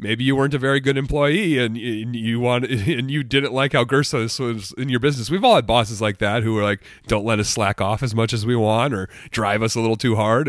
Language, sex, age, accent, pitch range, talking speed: English, male, 30-49, American, 105-135 Hz, 265 wpm